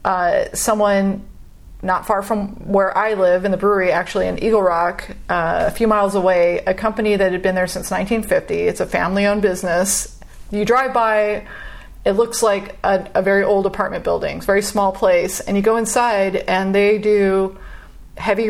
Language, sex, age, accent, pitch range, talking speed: English, female, 30-49, American, 195-235 Hz, 185 wpm